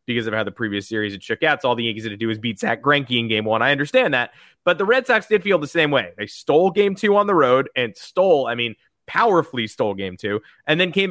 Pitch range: 120-170 Hz